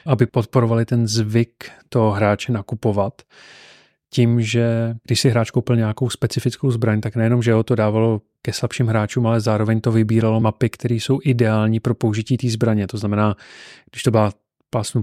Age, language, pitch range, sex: 30-49, Czech, 110-125 Hz, male